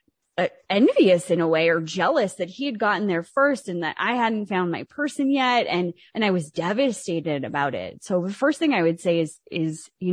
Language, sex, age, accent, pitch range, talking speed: English, female, 20-39, American, 180-260 Hz, 225 wpm